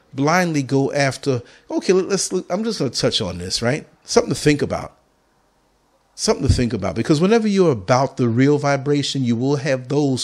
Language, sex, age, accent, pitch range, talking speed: English, male, 50-69, American, 115-160 Hz, 195 wpm